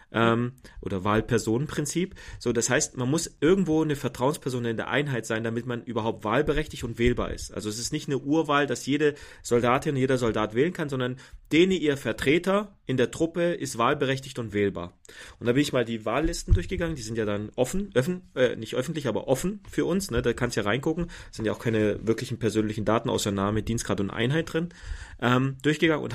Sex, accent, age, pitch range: male, German, 30-49, 110-145 Hz